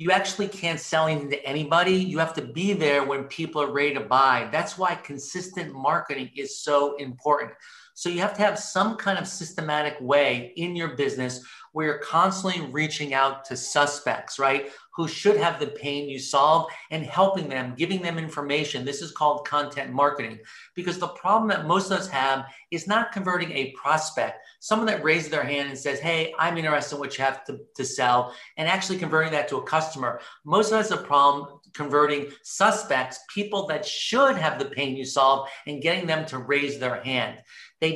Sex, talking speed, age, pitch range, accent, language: male, 200 wpm, 40-59, 140-170 Hz, American, English